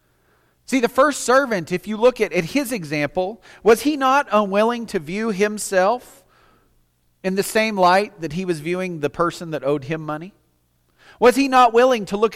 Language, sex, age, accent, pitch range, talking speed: English, male, 40-59, American, 125-210 Hz, 180 wpm